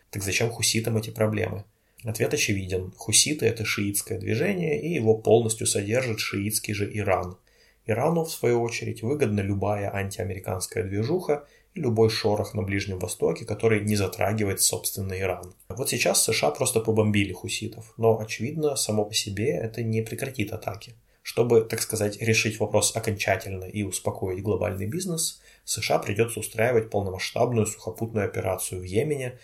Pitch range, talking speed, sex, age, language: 100-115 Hz, 145 wpm, male, 20-39, Russian